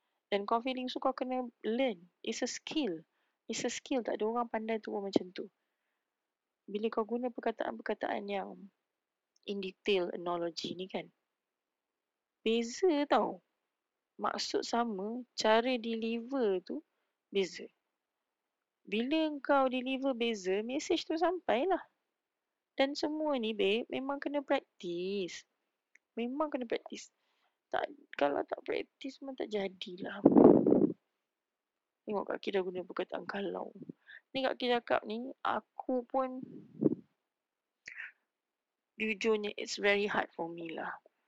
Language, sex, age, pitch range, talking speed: English, female, 20-39, 195-265 Hz, 120 wpm